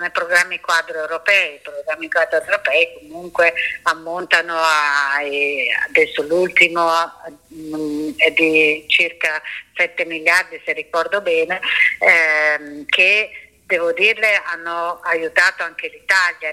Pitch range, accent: 165-195 Hz, native